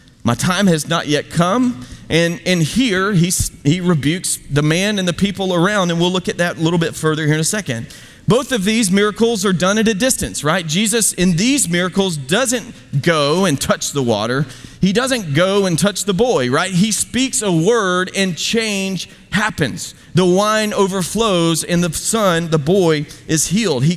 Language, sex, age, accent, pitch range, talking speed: English, male, 30-49, American, 165-220 Hz, 190 wpm